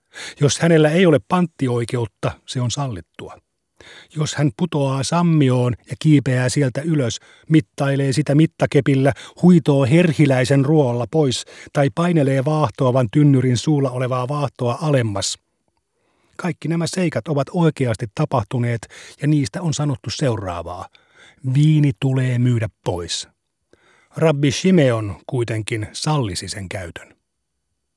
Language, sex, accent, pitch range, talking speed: Finnish, male, native, 120-150 Hz, 110 wpm